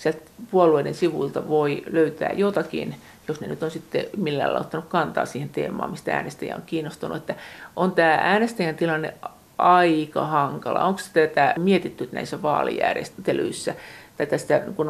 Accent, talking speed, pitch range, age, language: native, 130 wpm, 155-190 Hz, 50-69, Finnish